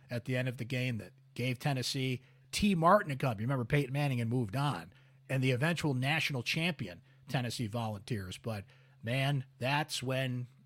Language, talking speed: English, 175 wpm